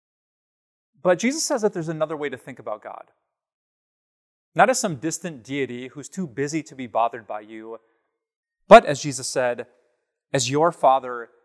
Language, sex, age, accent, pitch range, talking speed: English, male, 30-49, American, 135-180 Hz, 160 wpm